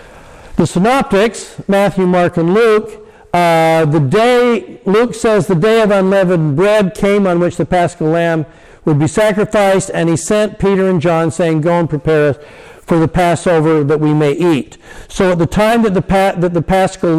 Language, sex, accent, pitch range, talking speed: English, male, American, 140-180 Hz, 180 wpm